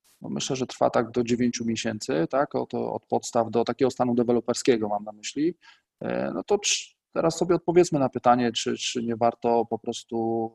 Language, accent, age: Polish, native, 20-39